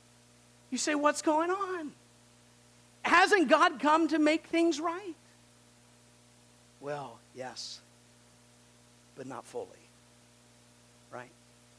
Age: 40-59